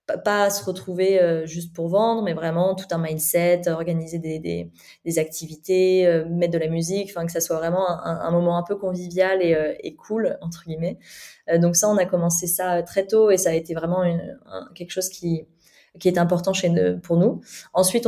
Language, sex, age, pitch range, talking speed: French, female, 20-39, 165-190 Hz, 205 wpm